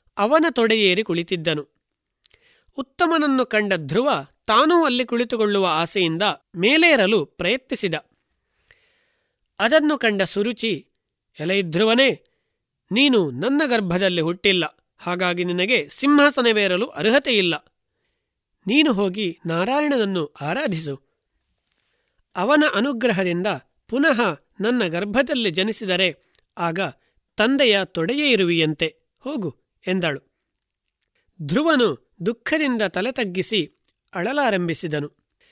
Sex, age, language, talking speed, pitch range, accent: male, 30-49, Kannada, 75 wpm, 175-245 Hz, native